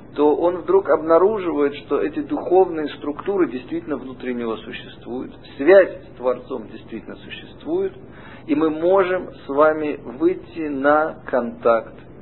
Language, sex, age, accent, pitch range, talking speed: Russian, male, 50-69, native, 110-145 Hz, 125 wpm